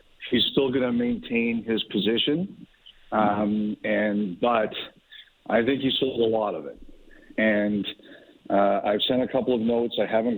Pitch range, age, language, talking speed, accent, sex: 105-120 Hz, 50-69, English, 160 wpm, American, male